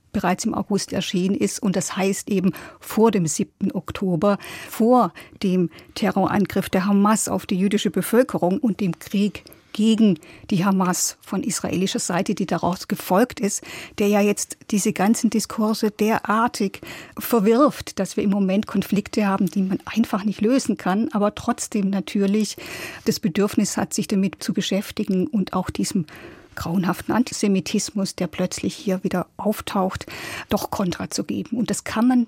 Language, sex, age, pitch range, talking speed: German, female, 50-69, 190-220 Hz, 155 wpm